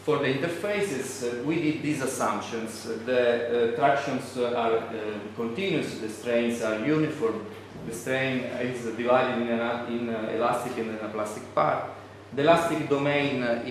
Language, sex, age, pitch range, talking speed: English, male, 40-59, 115-135 Hz, 160 wpm